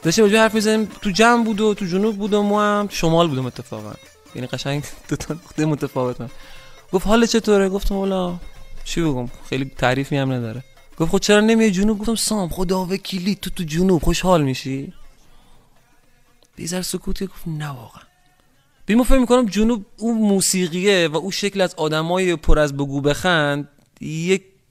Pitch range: 140-205 Hz